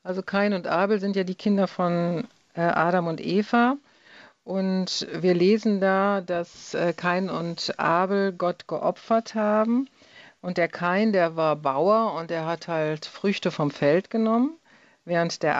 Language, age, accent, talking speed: German, 50-69, German, 150 wpm